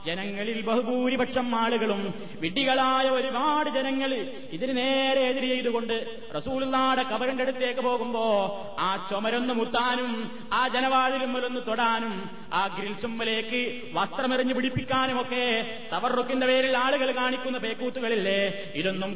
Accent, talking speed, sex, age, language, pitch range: native, 95 wpm, male, 30-49, Malayalam, 220-255 Hz